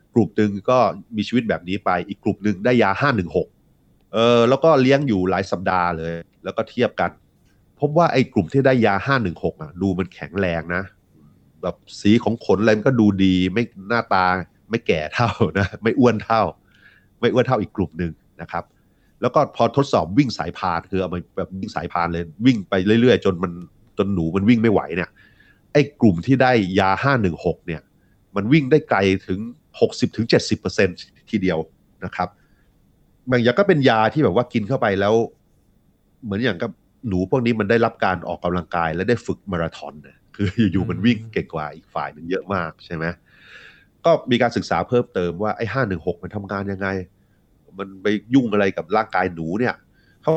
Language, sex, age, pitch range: Thai, male, 30-49, 95-120 Hz